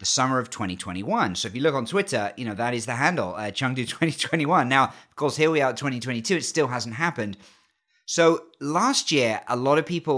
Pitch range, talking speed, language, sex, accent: 110-140 Hz, 220 wpm, English, male, British